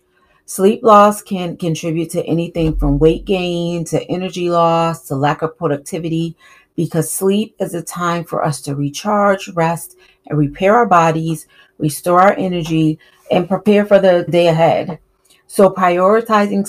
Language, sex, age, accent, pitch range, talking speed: English, female, 30-49, American, 155-185 Hz, 145 wpm